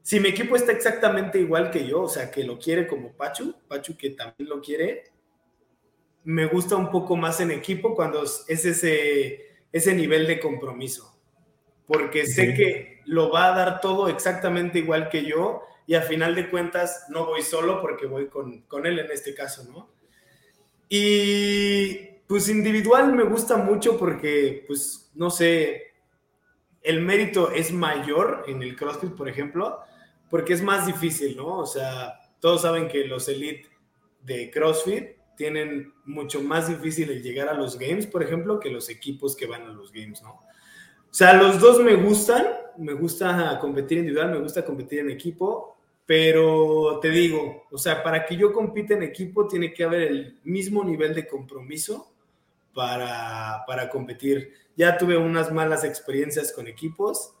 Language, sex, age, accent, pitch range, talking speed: Spanish, male, 20-39, Mexican, 145-185 Hz, 170 wpm